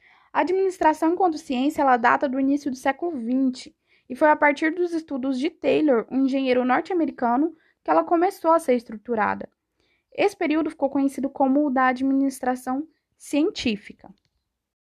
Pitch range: 255-320 Hz